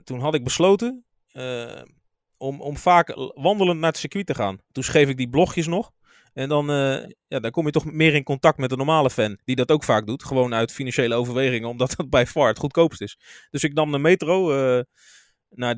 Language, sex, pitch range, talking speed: Dutch, male, 125-170 Hz, 220 wpm